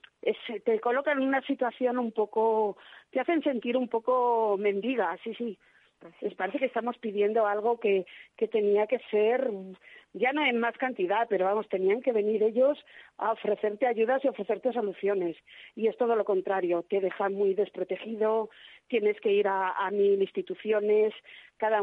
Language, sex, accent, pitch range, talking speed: Spanish, female, Spanish, 200-235 Hz, 165 wpm